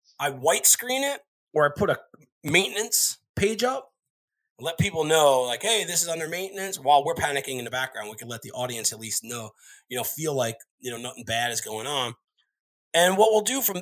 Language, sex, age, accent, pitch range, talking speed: English, male, 30-49, American, 120-175 Hz, 215 wpm